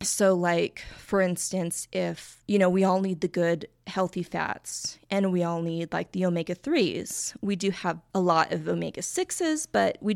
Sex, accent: female, American